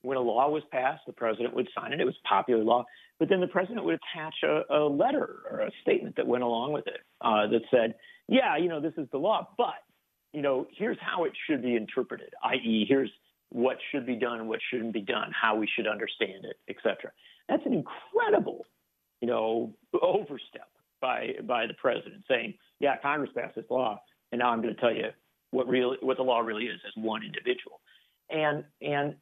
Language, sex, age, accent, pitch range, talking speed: English, male, 50-69, American, 120-160 Hz, 205 wpm